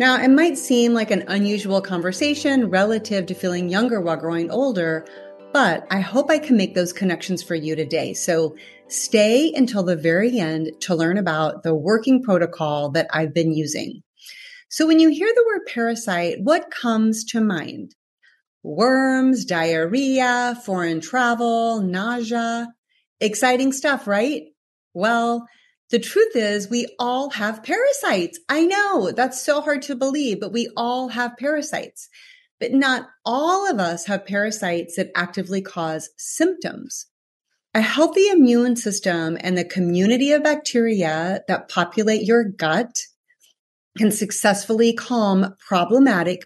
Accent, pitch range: American, 180-260 Hz